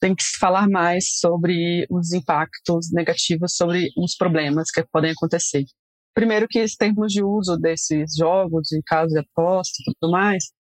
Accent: Brazilian